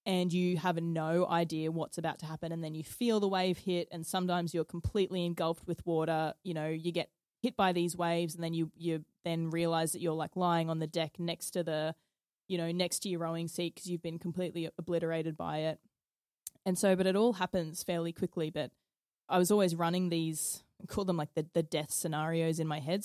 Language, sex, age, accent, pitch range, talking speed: English, female, 20-39, Australian, 160-180 Hz, 220 wpm